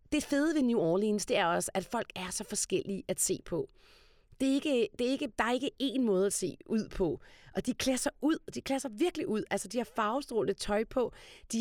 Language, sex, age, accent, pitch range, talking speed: Danish, female, 30-49, native, 175-240 Hz, 220 wpm